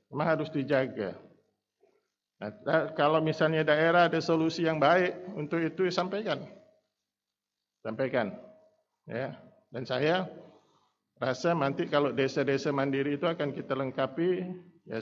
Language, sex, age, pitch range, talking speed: Indonesian, male, 50-69, 120-150 Hz, 110 wpm